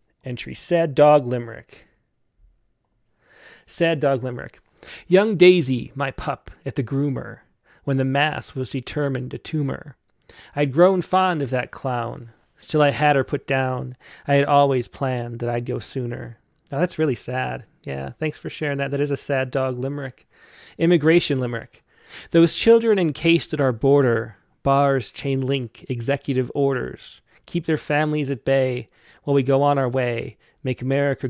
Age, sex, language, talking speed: 30-49, male, English, 155 wpm